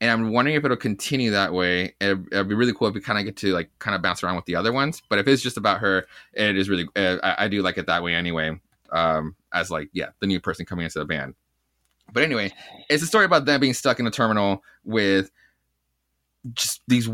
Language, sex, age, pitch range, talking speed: English, male, 20-39, 90-115 Hz, 250 wpm